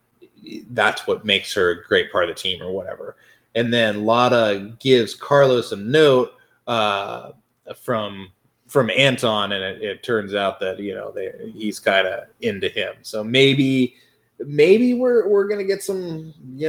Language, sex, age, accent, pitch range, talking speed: English, male, 20-39, American, 110-145 Hz, 160 wpm